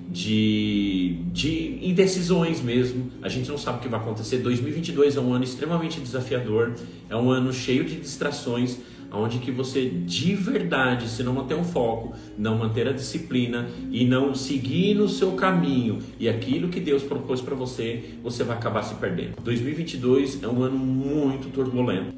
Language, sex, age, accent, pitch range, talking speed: Portuguese, male, 40-59, Brazilian, 115-155 Hz, 170 wpm